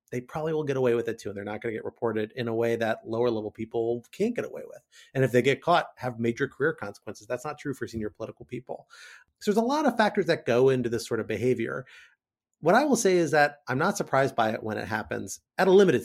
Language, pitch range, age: English, 110-145 Hz, 30-49